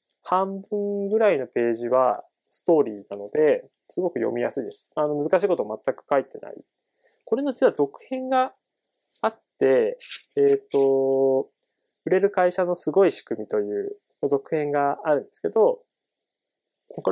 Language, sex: Japanese, male